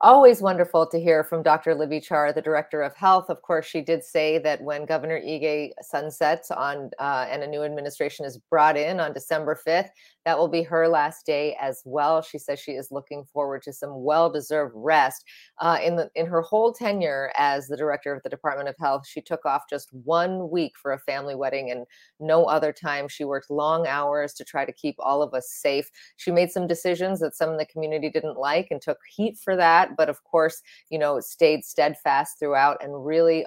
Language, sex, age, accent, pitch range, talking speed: English, female, 30-49, American, 140-165 Hz, 215 wpm